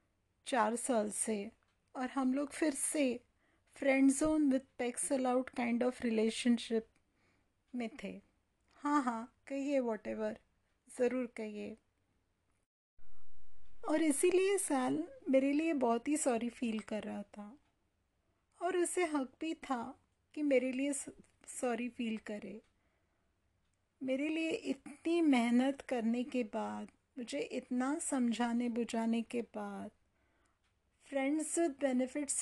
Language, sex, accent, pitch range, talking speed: English, female, Indian, 220-275 Hz, 115 wpm